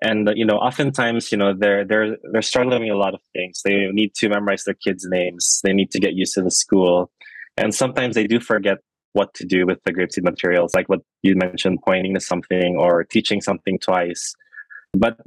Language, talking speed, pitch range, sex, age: English, 210 wpm, 95-110 Hz, male, 20-39